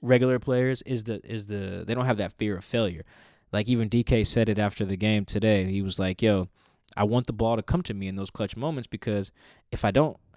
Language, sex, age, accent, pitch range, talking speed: English, male, 20-39, American, 100-125 Hz, 245 wpm